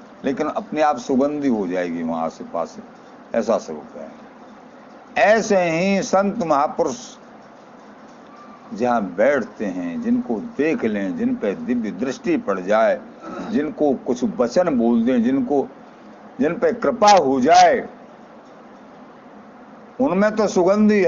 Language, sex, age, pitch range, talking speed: Hindi, male, 60-79, 175-255 Hz, 115 wpm